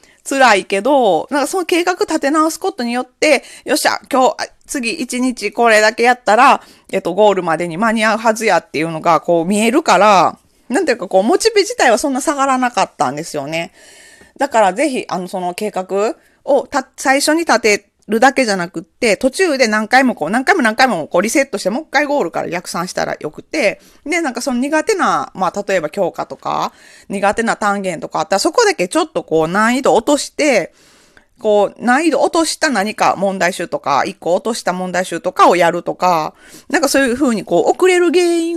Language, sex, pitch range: Japanese, female, 185-285 Hz